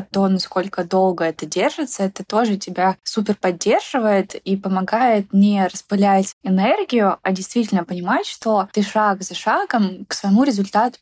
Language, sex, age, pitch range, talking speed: Russian, female, 20-39, 190-215 Hz, 140 wpm